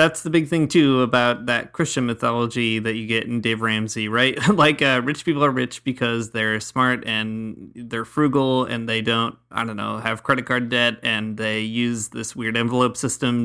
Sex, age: male, 30-49